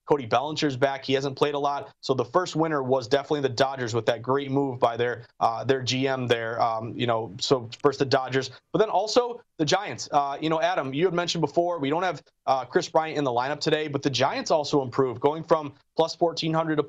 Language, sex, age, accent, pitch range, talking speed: English, male, 30-49, American, 140-170 Hz, 240 wpm